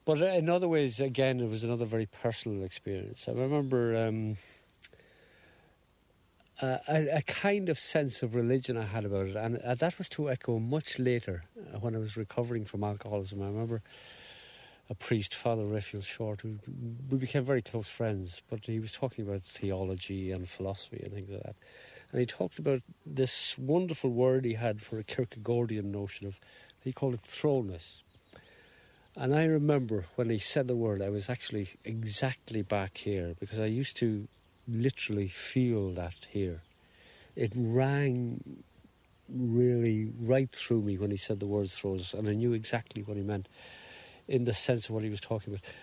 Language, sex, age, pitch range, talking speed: English, male, 50-69, 100-130 Hz, 170 wpm